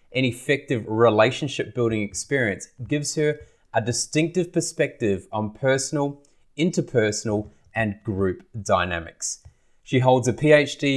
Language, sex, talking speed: English, male, 110 wpm